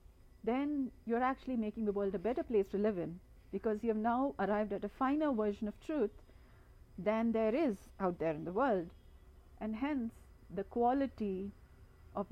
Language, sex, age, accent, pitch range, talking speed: English, female, 50-69, Indian, 180-230 Hz, 175 wpm